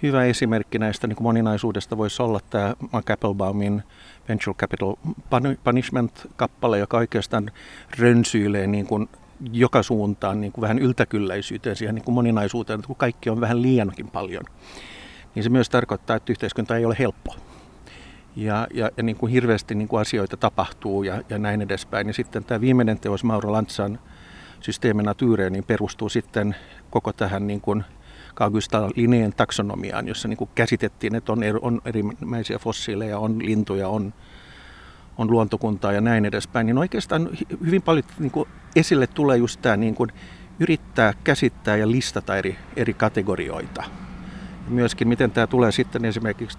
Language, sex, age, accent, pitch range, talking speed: Finnish, male, 50-69, native, 100-120 Hz, 135 wpm